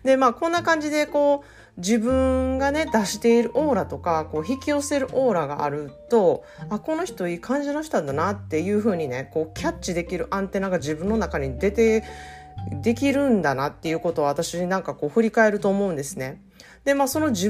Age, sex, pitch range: 40-59, female, 165-255 Hz